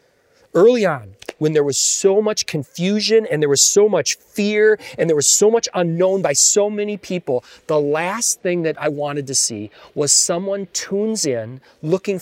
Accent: American